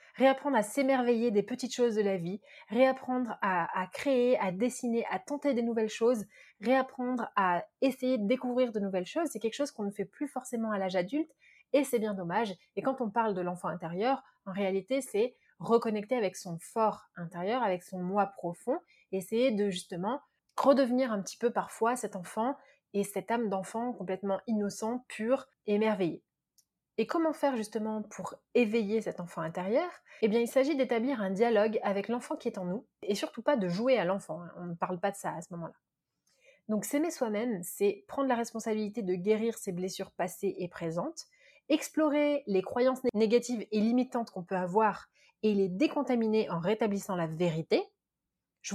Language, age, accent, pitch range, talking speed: French, 30-49, French, 195-255 Hz, 185 wpm